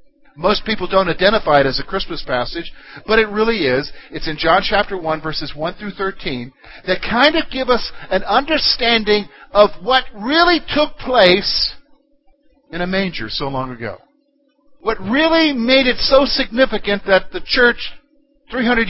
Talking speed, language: 160 wpm, English